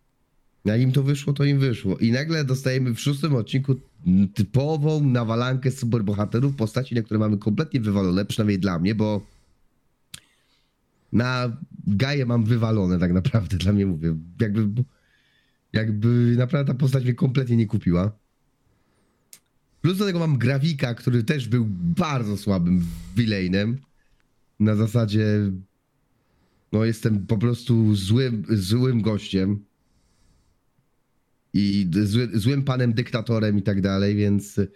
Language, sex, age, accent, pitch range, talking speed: Polish, male, 30-49, native, 105-130 Hz, 125 wpm